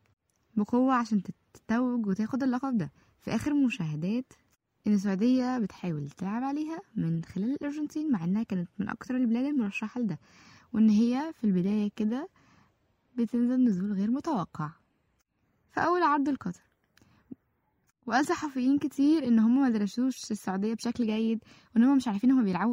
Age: 10-29